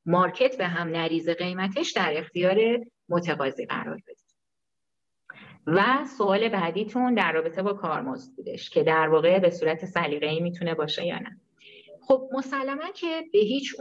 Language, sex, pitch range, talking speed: Persian, female, 160-235 Hz, 150 wpm